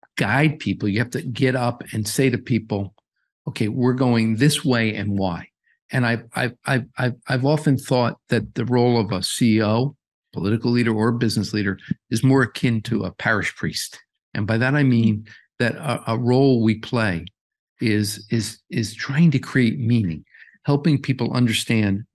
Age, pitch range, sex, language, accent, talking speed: 50-69, 110-135 Hz, male, English, American, 175 wpm